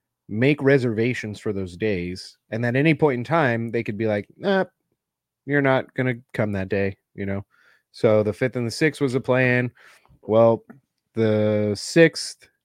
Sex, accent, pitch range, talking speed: male, American, 100-125 Hz, 175 wpm